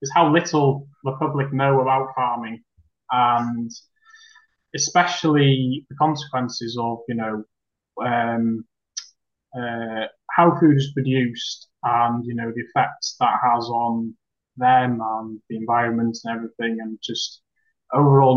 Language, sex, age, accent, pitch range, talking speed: English, male, 20-39, British, 115-130 Hz, 125 wpm